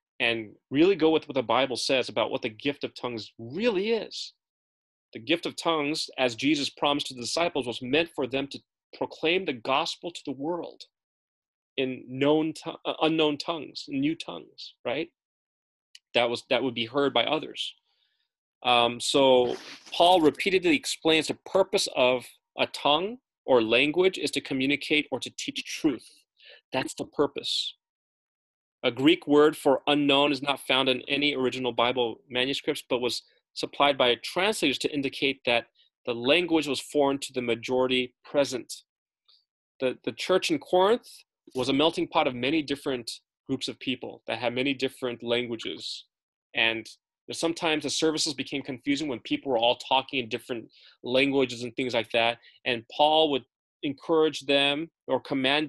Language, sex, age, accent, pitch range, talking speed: English, male, 30-49, American, 125-160 Hz, 160 wpm